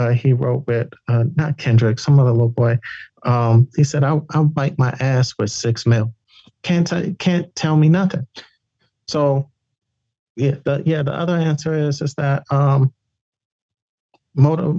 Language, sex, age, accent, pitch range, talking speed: English, male, 40-59, American, 115-140 Hz, 160 wpm